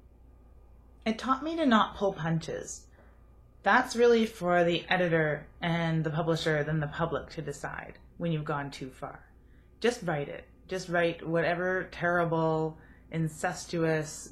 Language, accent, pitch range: English, American, 140-175 Hz